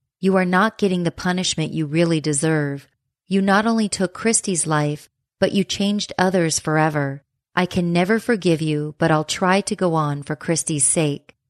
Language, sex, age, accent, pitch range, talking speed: English, female, 30-49, American, 145-180 Hz, 175 wpm